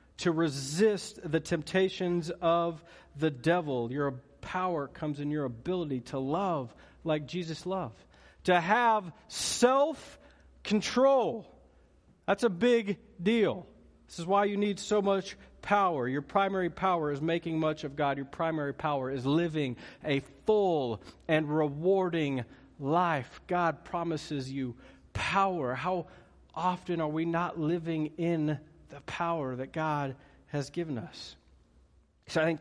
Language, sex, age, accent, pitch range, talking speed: English, male, 40-59, American, 140-195 Hz, 135 wpm